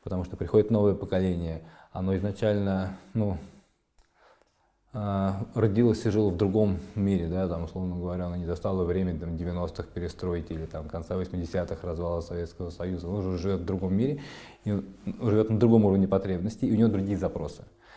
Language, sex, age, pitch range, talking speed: Russian, male, 20-39, 85-100 Hz, 145 wpm